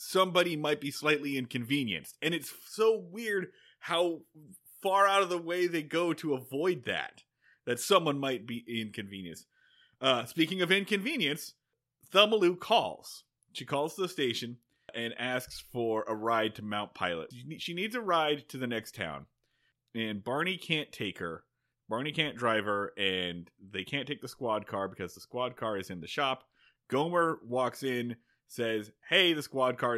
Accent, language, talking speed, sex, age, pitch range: American, English, 165 wpm, male, 30-49, 115-175 Hz